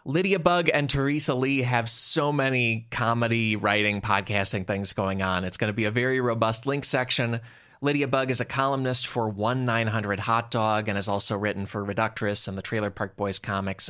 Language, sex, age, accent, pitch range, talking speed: English, male, 20-39, American, 110-160 Hz, 180 wpm